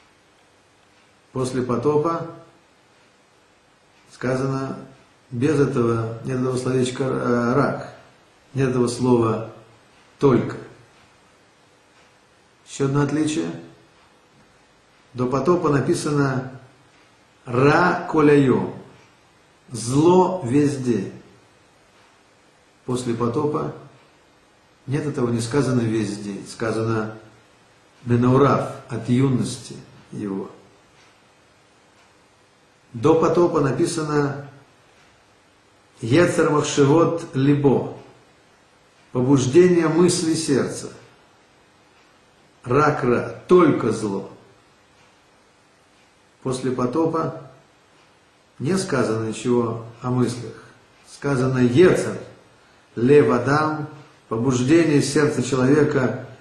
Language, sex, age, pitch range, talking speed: Russian, male, 50-69, 115-150 Hz, 65 wpm